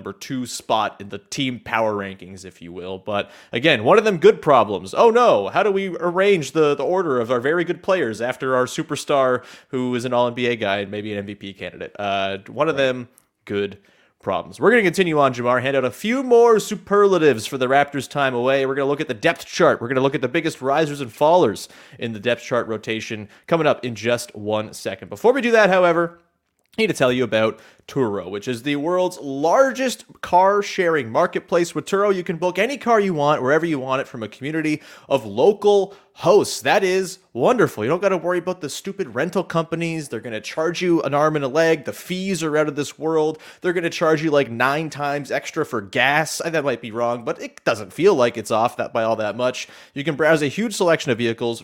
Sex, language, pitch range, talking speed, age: male, English, 120-170 Hz, 235 wpm, 30-49